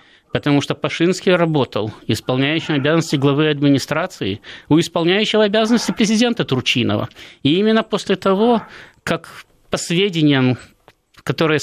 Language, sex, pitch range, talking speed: Russian, male, 135-175 Hz, 110 wpm